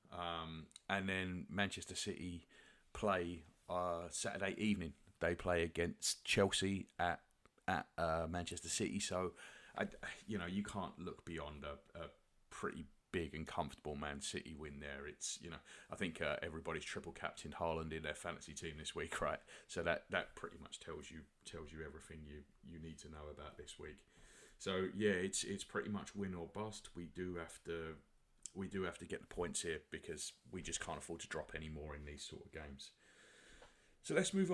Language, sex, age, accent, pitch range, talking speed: English, male, 30-49, British, 80-95 Hz, 190 wpm